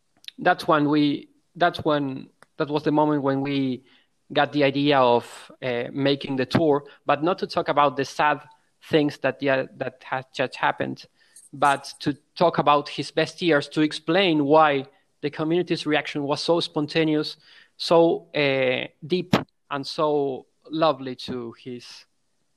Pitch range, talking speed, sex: 130-155 Hz, 150 wpm, male